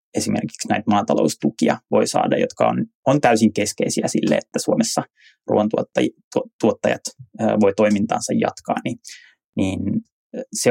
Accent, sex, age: native, male, 20-39